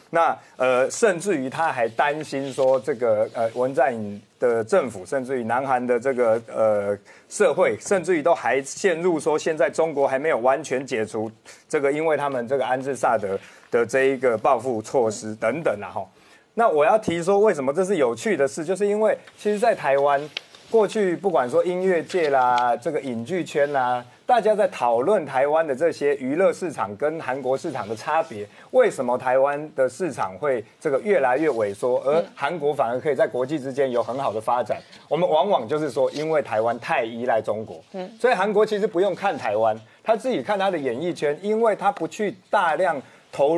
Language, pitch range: Chinese, 125-195 Hz